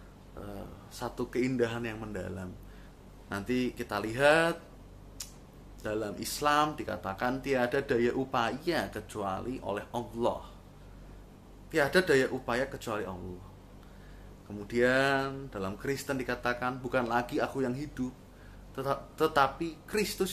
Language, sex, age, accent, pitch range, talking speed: Indonesian, male, 20-39, native, 105-145 Hz, 95 wpm